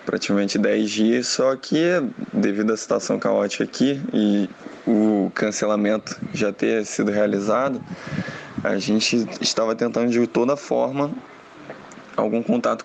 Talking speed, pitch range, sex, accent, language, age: 120 wpm, 110-125 Hz, male, Brazilian, Portuguese, 20-39